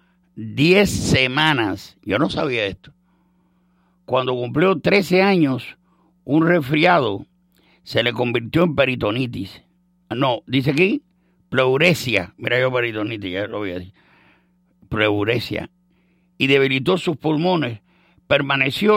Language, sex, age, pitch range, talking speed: English, male, 60-79, 130-180 Hz, 110 wpm